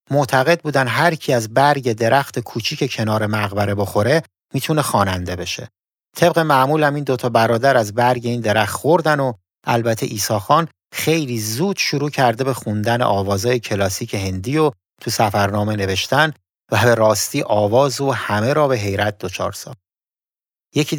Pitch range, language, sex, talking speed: 105-140 Hz, Persian, male, 150 wpm